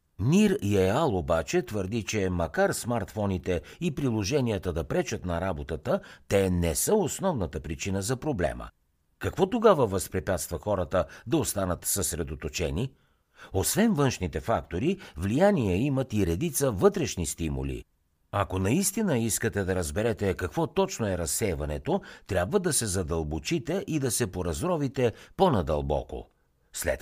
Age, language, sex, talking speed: 60-79, Bulgarian, male, 125 wpm